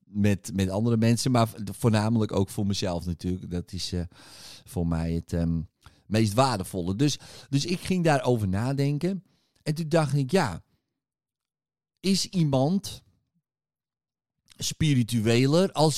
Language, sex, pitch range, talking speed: Dutch, male, 100-140 Hz, 125 wpm